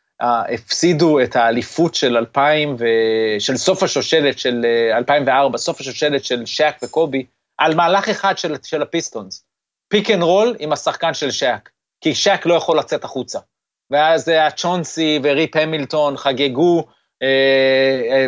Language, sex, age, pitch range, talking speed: Hebrew, male, 30-49, 135-175 Hz, 145 wpm